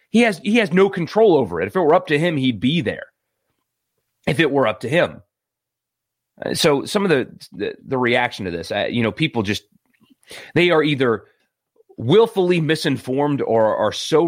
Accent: American